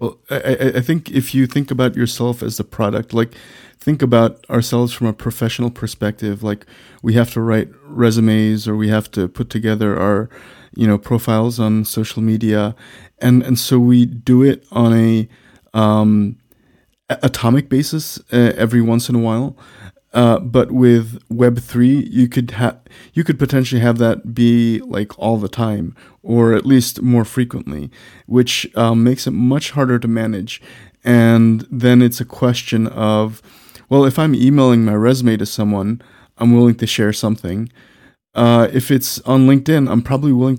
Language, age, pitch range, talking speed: English, 30-49, 110-125 Hz, 165 wpm